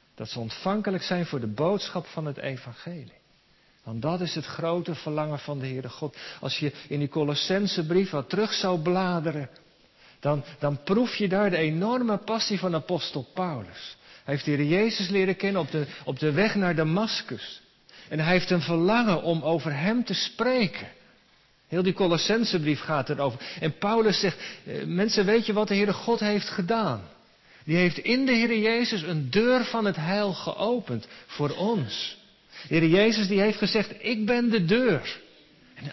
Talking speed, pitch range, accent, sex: 175 wpm, 150-205 Hz, Dutch, male